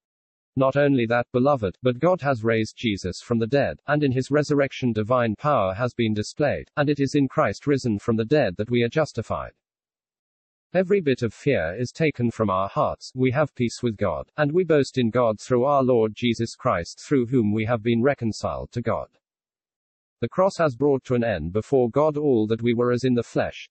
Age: 40-59